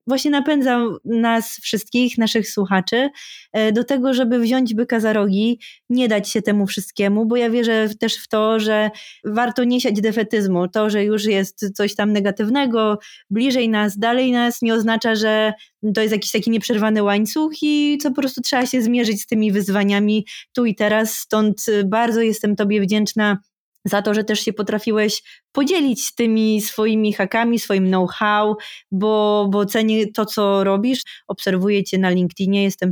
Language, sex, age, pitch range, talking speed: Polish, female, 20-39, 200-230 Hz, 165 wpm